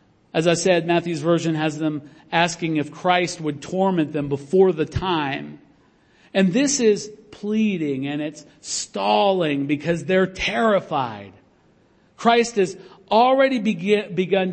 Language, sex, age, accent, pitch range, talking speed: English, male, 50-69, American, 155-205 Hz, 125 wpm